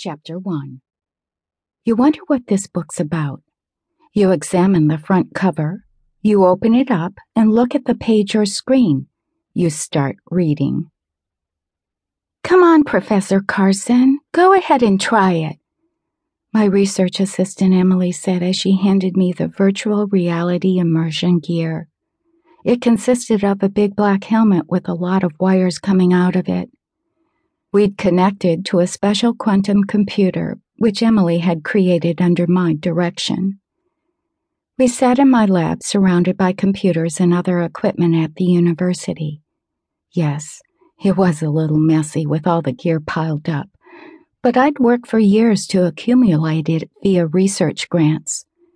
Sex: female